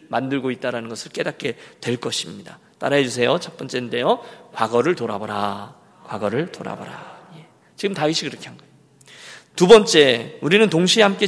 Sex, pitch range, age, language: male, 140-205 Hz, 40-59, Korean